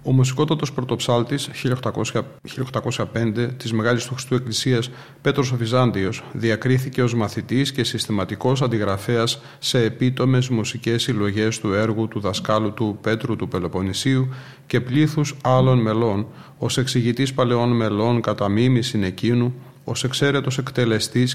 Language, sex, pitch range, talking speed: Greek, male, 110-135 Hz, 120 wpm